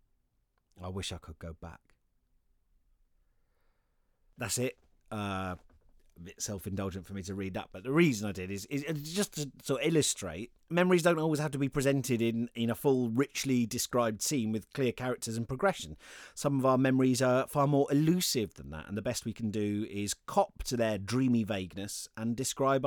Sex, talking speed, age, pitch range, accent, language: male, 190 wpm, 30-49, 100-140 Hz, British, English